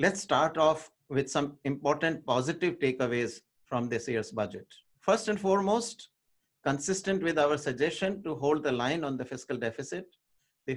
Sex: male